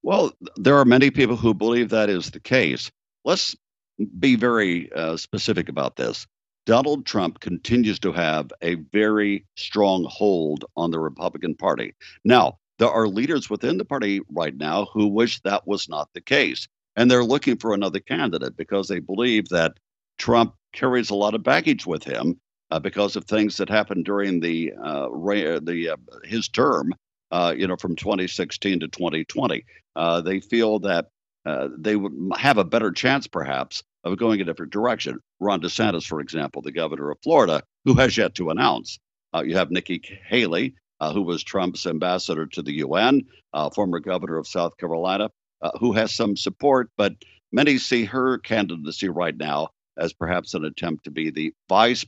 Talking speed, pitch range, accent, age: 180 wpm, 85-110 Hz, American, 60-79